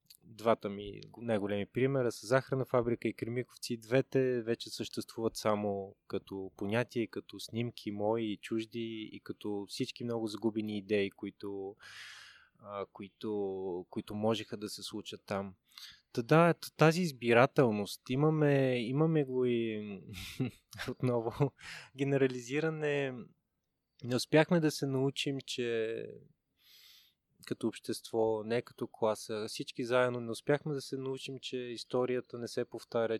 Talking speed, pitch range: 120 wpm, 110-135 Hz